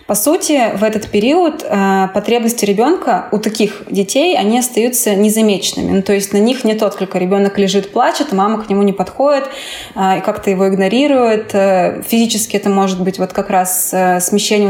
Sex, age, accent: female, 20-39, native